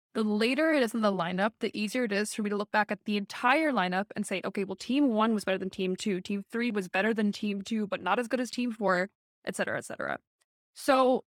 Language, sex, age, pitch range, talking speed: English, female, 20-39, 195-240 Hz, 265 wpm